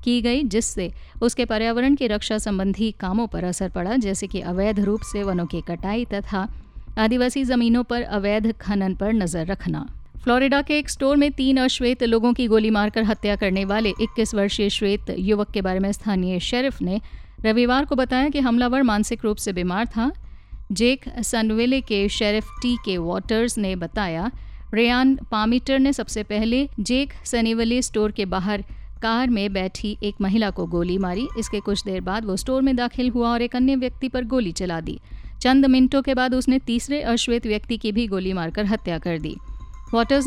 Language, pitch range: Hindi, 200-245 Hz